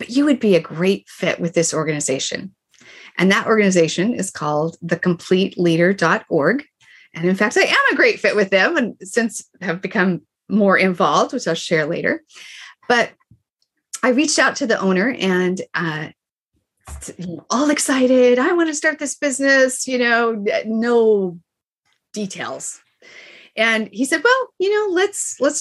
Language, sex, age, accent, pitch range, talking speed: English, female, 40-59, American, 175-235 Hz, 150 wpm